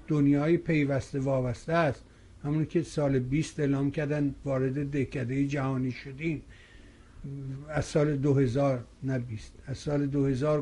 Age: 60-79